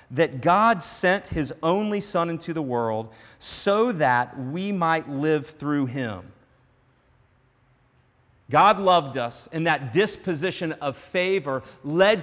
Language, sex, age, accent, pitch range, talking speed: English, male, 40-59, American, 125-180 Hz, 125 wpm